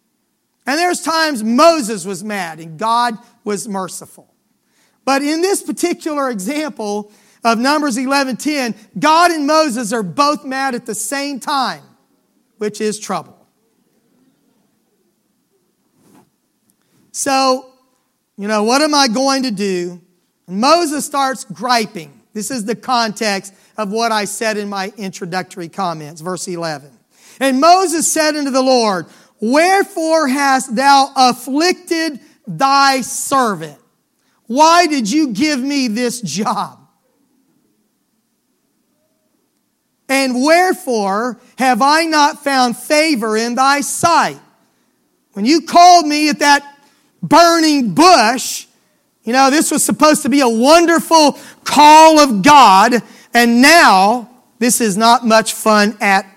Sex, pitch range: male, 220-295 Hz